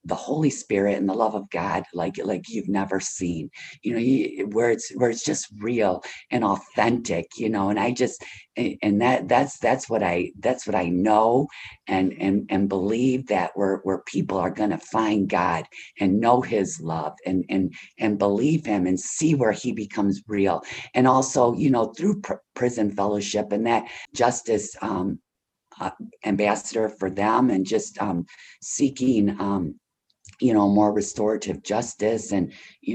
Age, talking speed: 50-69, 175 wpm